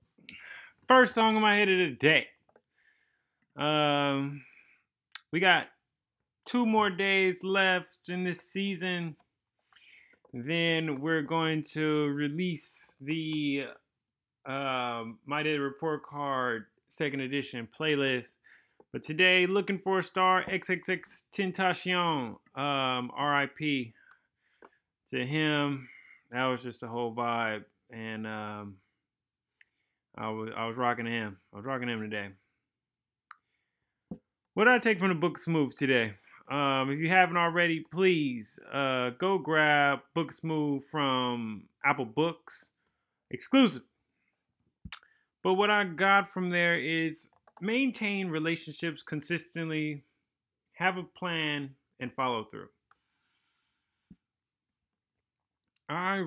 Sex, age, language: male, 20-39, English